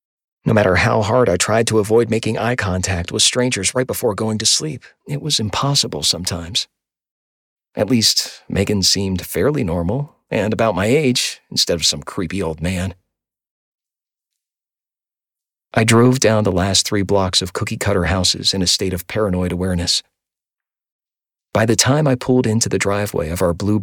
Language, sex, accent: English, male, American